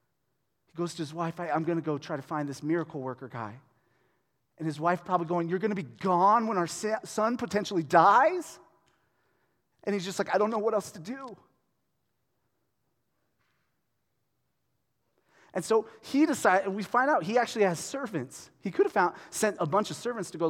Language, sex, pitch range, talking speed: English, male, 150-205 Hz, 185 wpm